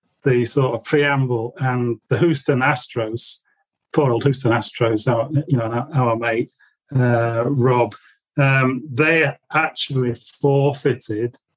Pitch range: 120-145 Hz